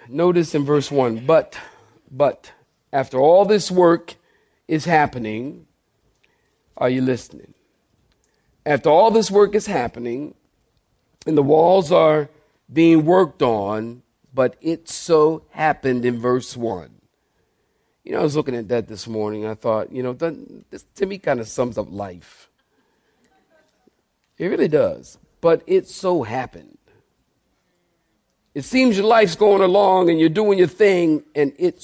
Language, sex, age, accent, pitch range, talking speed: English, male, 50-69, American, 120-175 Hz, 145 wpm